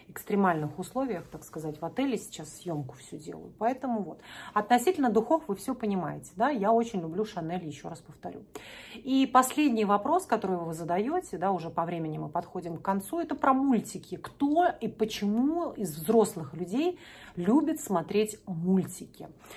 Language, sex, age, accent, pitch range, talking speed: Russian, female, 40-59, native, 185-245 Hz, 155 wpm